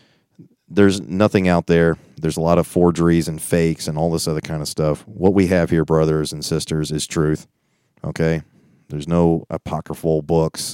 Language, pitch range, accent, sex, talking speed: English, 80-90 Hz, American, male, 180 wpm